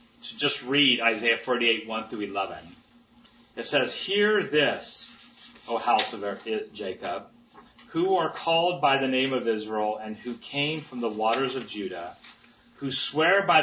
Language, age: English, 30-49